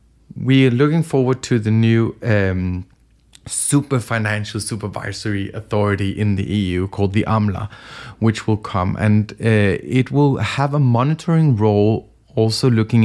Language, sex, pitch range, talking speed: Danish, male, 100-120 Hz, 145 wpm